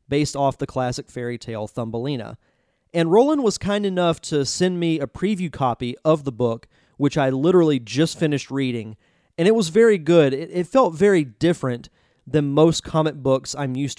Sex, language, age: male, English, 30-49